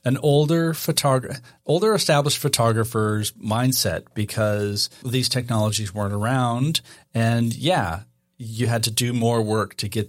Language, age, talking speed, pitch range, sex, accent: English, 40-59, 130 wpm, 100-125 Hz, male, American